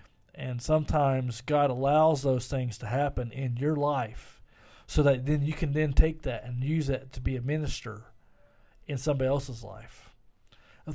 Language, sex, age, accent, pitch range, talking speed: English, male, 40-59, American, 125-155 Hz, 170 wpm